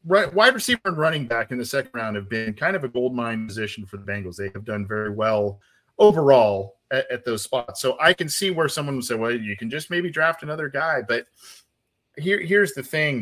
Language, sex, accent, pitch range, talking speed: English, male, American, 125-170 Hz, 225 wpm